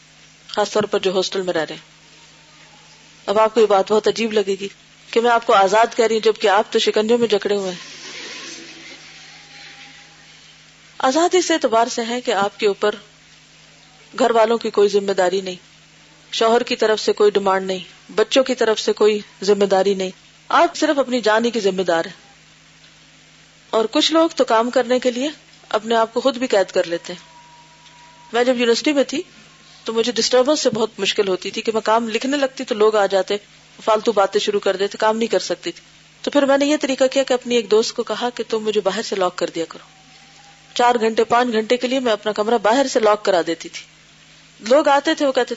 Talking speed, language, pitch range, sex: 215 wpm, Urdu, 195-250 Hz, female